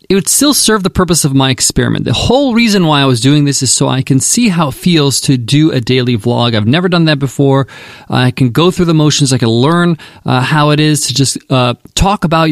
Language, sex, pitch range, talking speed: English, male, 135-175 Hz, 260 wpm